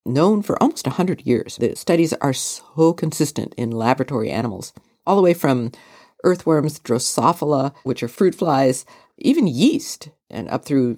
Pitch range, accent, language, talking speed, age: 120-160 Hz, American, English, 160 wpm, 50-69